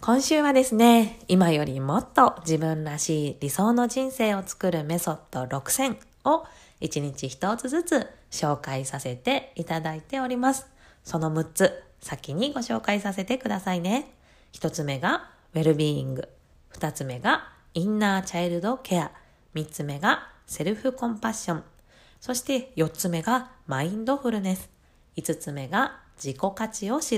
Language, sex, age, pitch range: Japanese, female, 20-39, 155-240 Hz